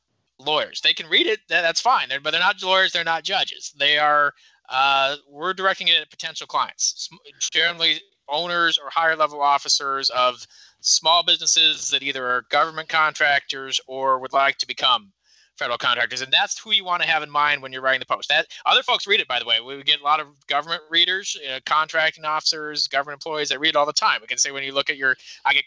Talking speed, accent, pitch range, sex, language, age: 215 wpm, American, 135-160 Hz, male, English, 30-49